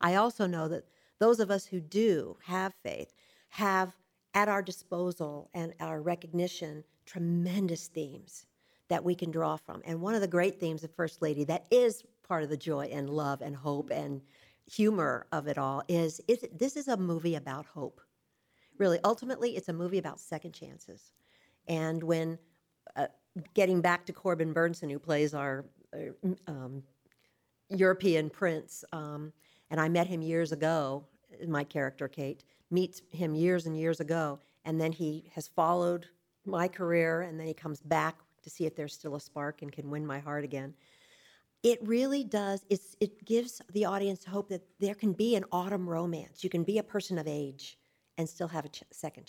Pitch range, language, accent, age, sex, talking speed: 155-195 Hz, English, American, 50-69, female, 180 wpm